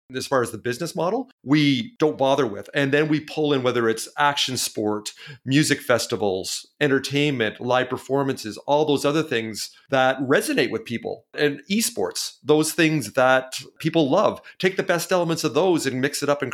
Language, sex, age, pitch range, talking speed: English, male, 40-59, 115-145 Hz, 180 wpm